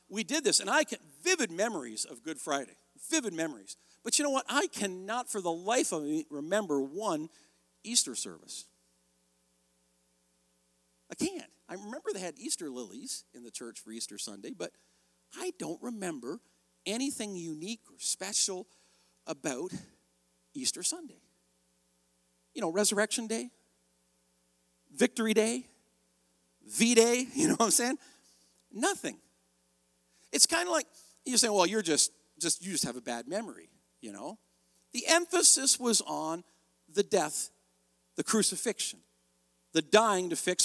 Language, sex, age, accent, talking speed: English, male, 50-69, American, 145 wpm